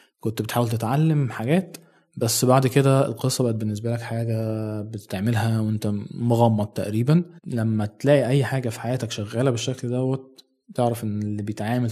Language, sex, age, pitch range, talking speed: Arabic, male, 20-39, 110-155 Hz, 145 wpm